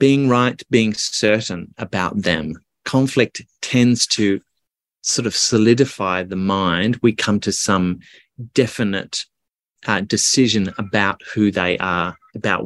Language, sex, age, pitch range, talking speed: English, male, 30-49, 95-115 Hz, 125 wpm